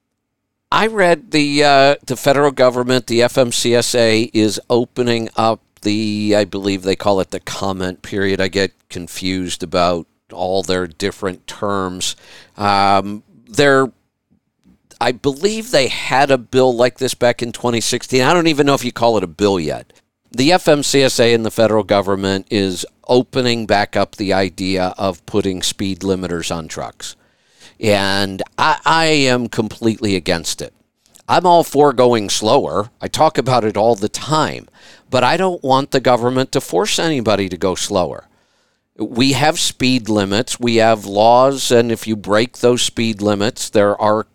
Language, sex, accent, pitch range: English, male, American, 100-130 Hz